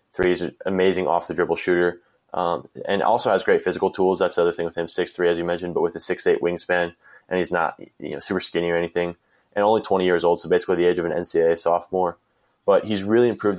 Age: 20-39